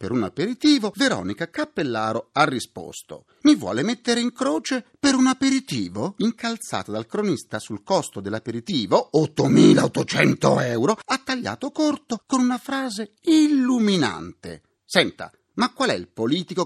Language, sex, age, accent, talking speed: Italian, male, 40-59, native, 130 wpm